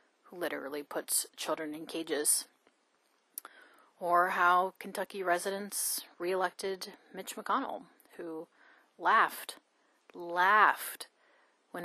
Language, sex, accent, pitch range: English, female, American, 165-210 Hz